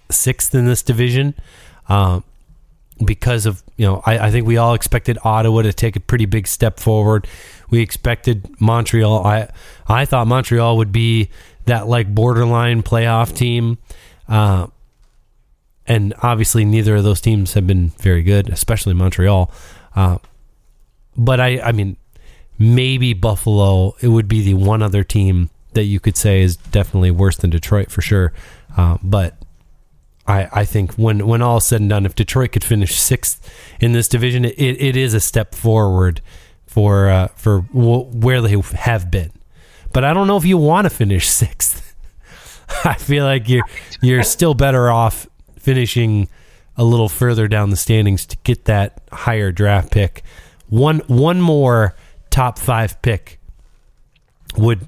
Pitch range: 95-120 Hz